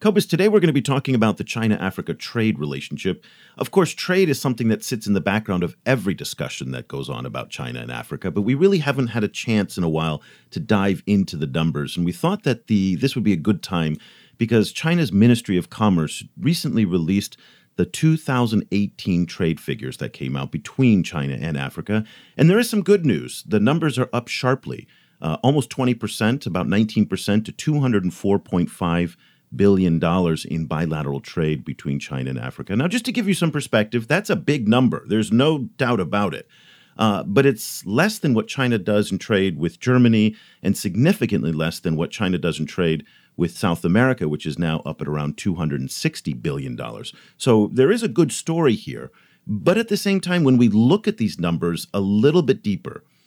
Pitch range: 85-130 Hz